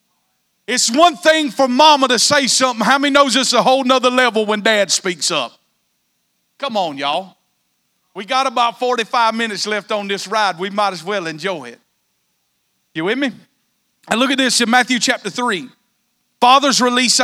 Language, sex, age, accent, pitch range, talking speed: English, male, 40-59, American, 195-245 Hz, 180 wpm